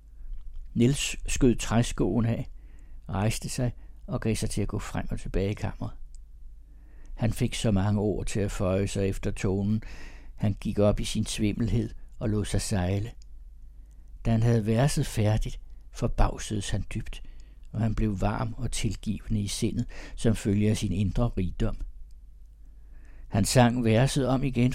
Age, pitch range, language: 60-79, 75-115 Hz, Danish